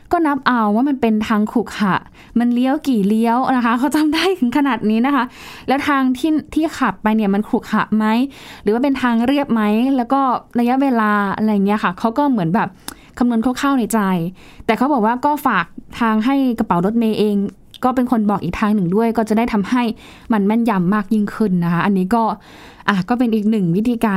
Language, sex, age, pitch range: Thai, female, 20-39, 205-255 Hz